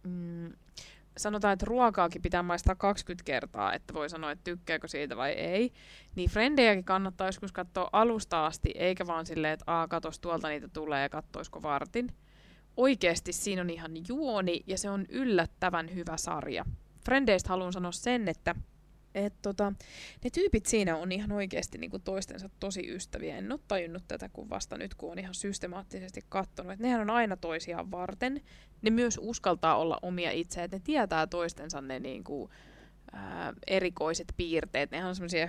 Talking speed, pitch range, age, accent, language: 165 wpm, 160-200 Hz, 20-39, native, Finnish